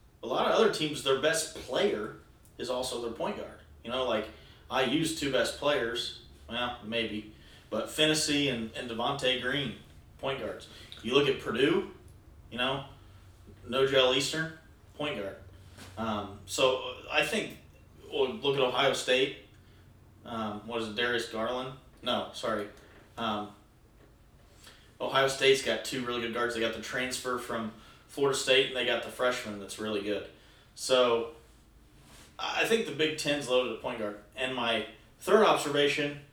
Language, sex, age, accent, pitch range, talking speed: English, male, 30-49, American, 110-135 Hz, 155 wpm